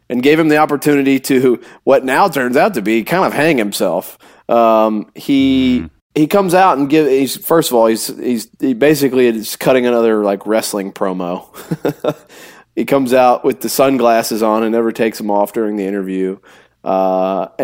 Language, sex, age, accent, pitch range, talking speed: English, male, 30-49, American, 110-130 Hz, 180 wpm